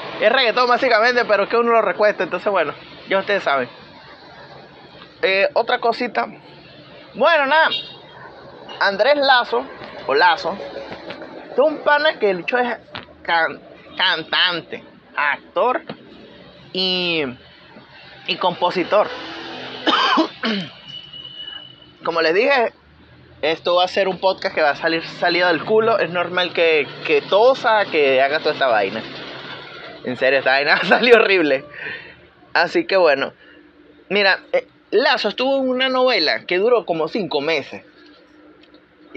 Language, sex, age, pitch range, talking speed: Spanish, male, 30-49, 185-295 Hz, 125 wpm